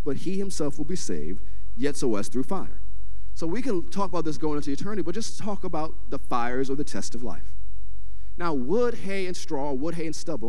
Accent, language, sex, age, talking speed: American, English, male, 40-59, 230 wpm